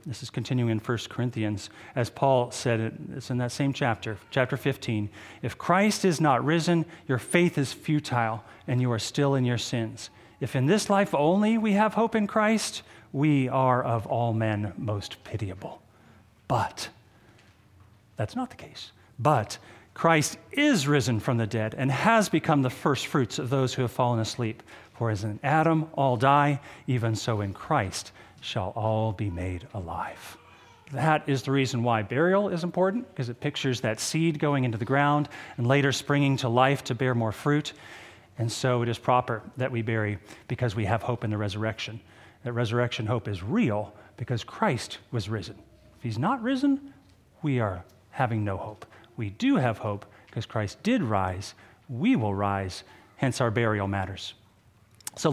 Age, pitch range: 40-59, 110-140 Hz